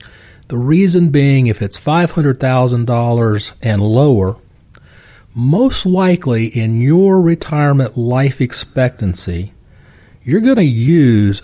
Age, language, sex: 40-59, English, male